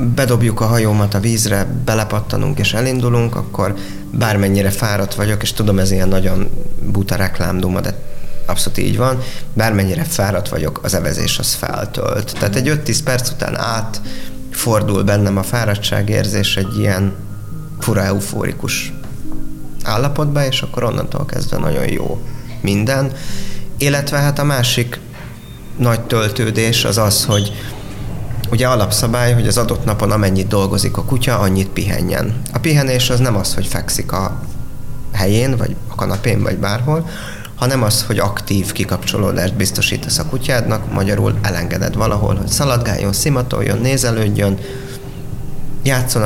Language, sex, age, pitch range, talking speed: Hungarian, male, 30-49, 100-125 Hz, 135 wpm